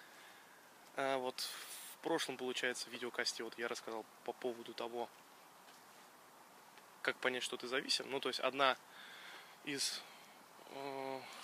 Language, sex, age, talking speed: Russian, male, 20-39, 125 wpm